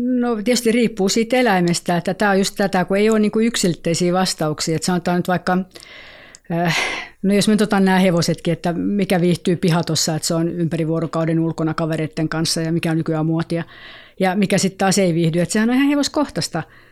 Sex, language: female, Finnish